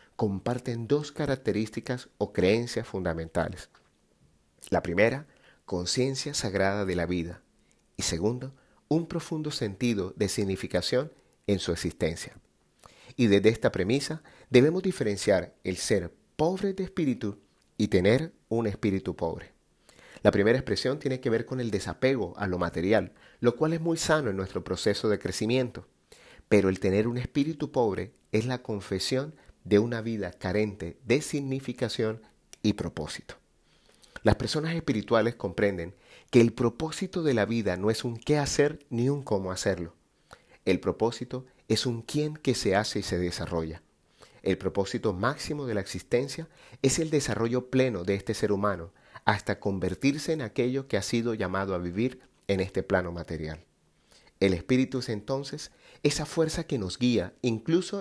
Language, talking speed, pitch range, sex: Spanish, 150 wpm, 95-130 Hz, male